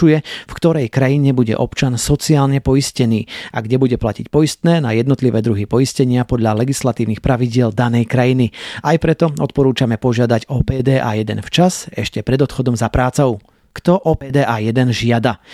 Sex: male